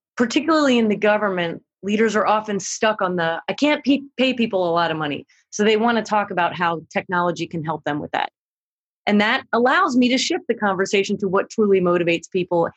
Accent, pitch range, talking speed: American, 180-225 Hz, 205 wpm